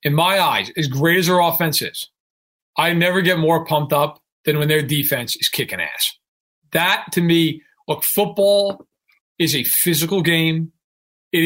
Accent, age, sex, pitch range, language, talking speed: American, 40-59, male, 150-190 Hz, English, 170 wpm